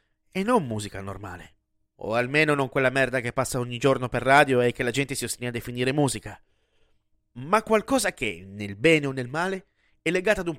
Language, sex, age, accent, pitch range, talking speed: Italian, male, 30-49, native, 110-155 Hz, 205 wpm